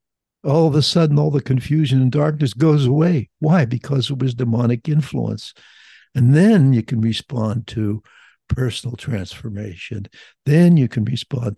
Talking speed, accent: 150 wpm, American